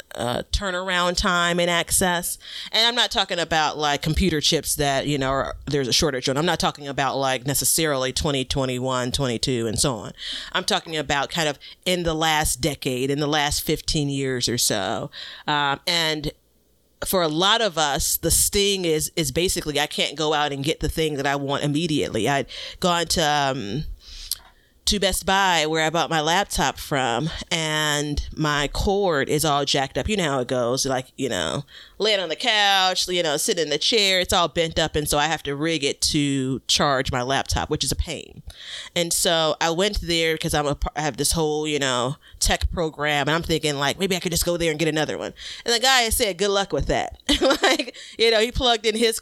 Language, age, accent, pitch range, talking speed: English, 40-59, American, 140-175 Hz, 210 wpm